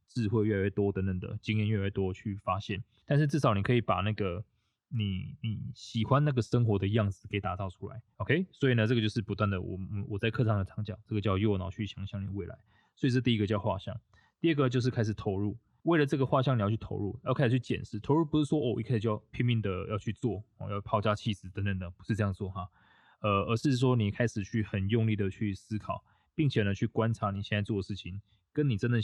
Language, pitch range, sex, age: Chinese, 100-120 Hz, male, 20-39